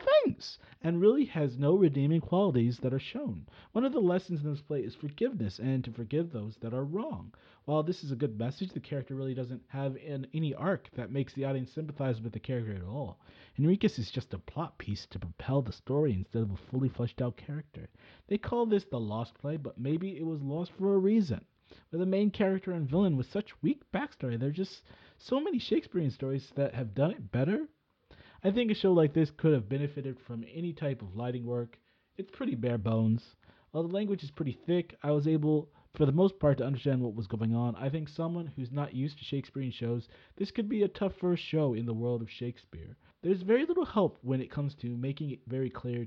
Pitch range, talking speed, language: 120-170 Hz, 225 wpm, English